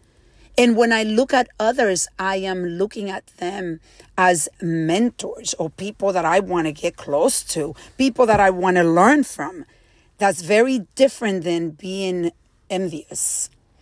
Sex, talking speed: female, 150 wpm